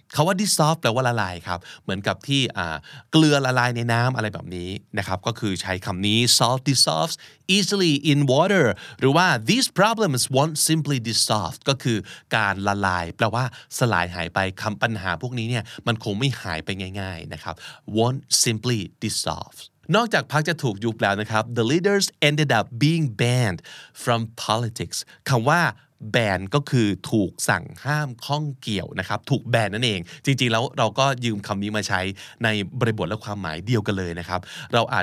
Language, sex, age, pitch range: Thai, male, 20-39, 105-140 Hz